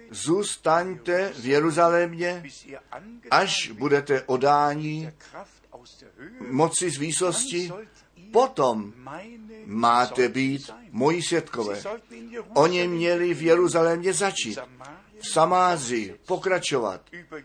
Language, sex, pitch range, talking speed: Czech, male, 140-180 Hz, 75 wpm